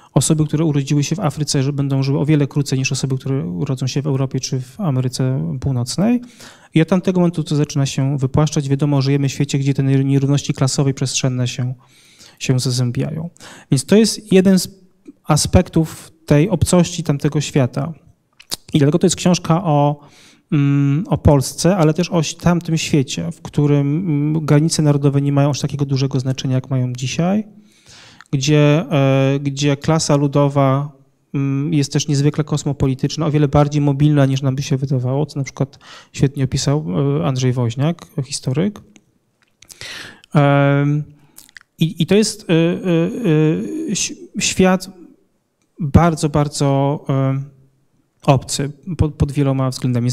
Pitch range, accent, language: 140-160 Hz, native, Polish